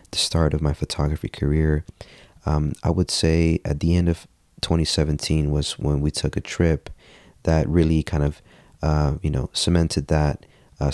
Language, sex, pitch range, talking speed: English, male, 75-80 Hz, 170 wpm